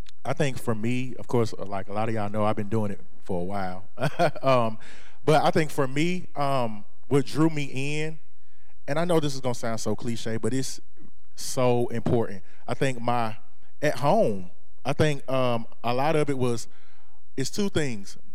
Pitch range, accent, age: 115-140 Hz, American, 30-49